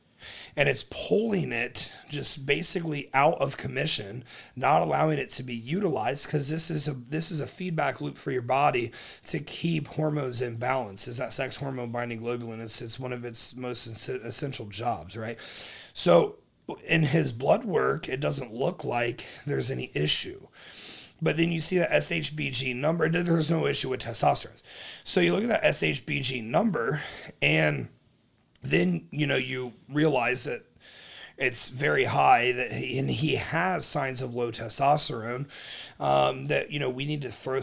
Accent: American